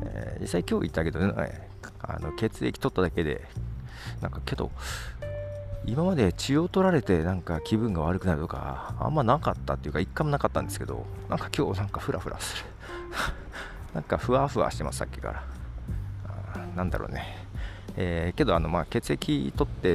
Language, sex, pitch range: Japanese, male, 85-115 Hz